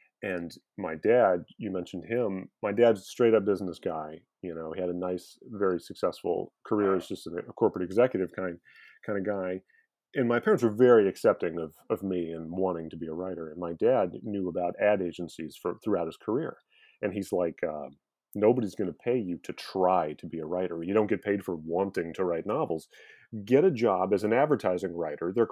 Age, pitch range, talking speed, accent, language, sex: 30-49, 90-115 Hz, 205 wpm, American, English, male